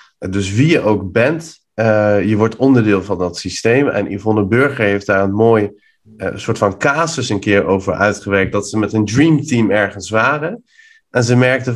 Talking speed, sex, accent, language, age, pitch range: 190 wpm, male, Dutch, Dutch, 30-49, 100-125 Hz